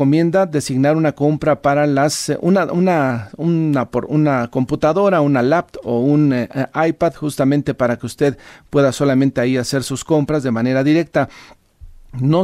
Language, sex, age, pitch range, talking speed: Spanish, male, 40-59, 130-150 Hz, 160 wpm